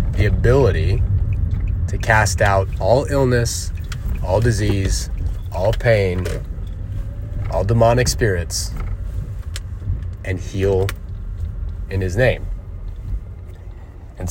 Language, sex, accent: English, male, American